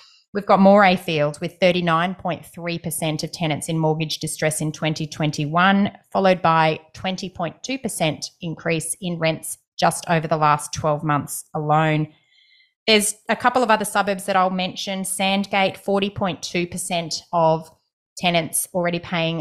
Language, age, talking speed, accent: English, 30-49, 125 wpm, Australian